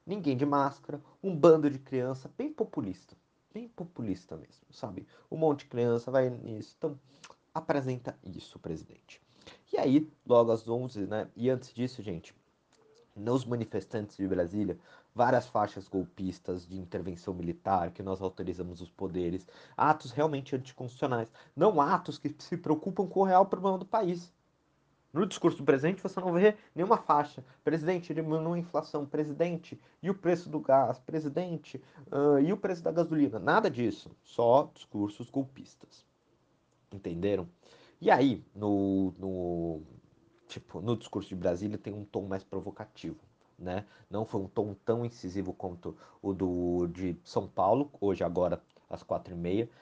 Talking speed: 155 wpm